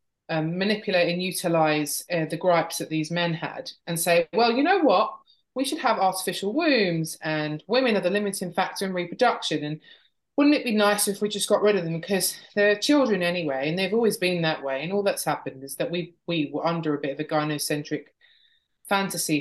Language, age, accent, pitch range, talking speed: English, 20-39, British, 155-205 Hz, 210 wpm